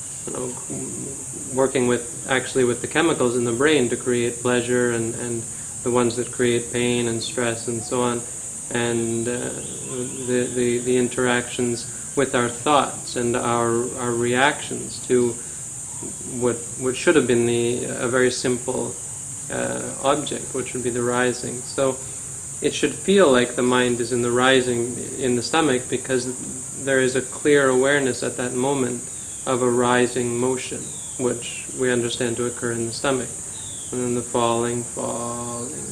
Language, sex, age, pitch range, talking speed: English, male, 30-49, 120-130 Hz, 160 wpm